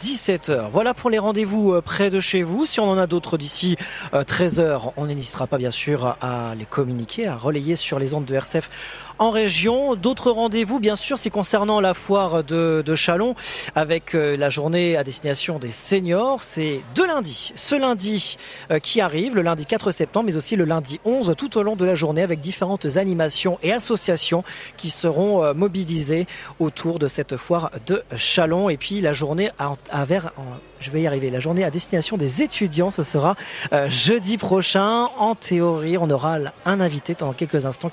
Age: 40-59